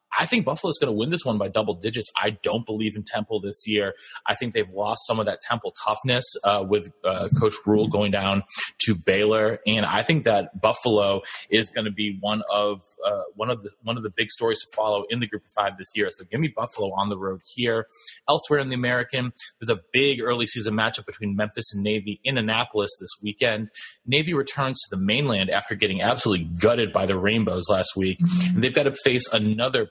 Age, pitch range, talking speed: 30-49, 105-130 Hz, 225 wpm